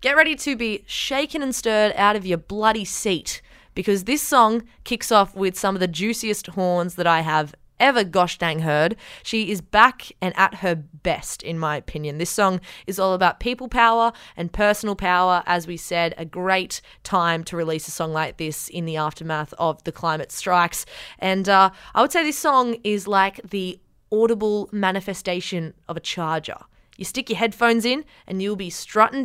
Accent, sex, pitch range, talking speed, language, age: Australian, female, 165-210 Hz, 190 wpm, English, 20-39